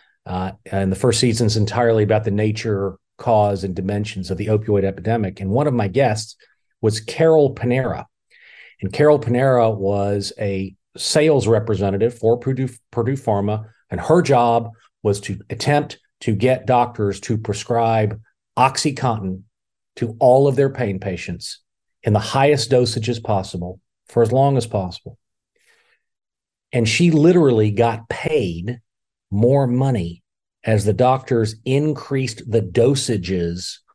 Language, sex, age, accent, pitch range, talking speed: English, male, 40-59, American, 100-125 Hz, 140 wpm